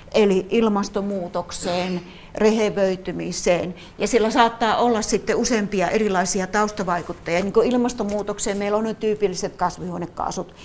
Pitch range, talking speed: 190-245 Hz, 95 wpm